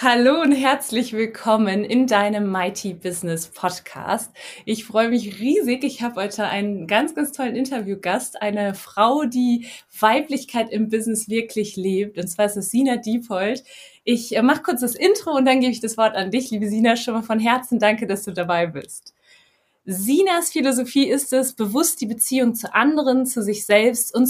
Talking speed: 180 wpm